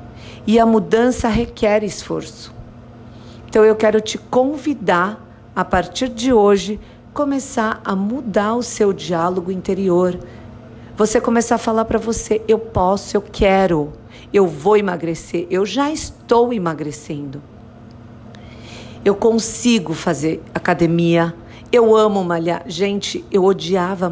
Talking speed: 120 wpm